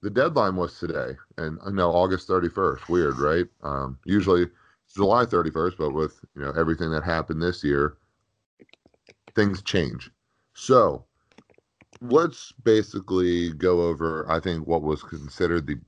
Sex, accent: male, American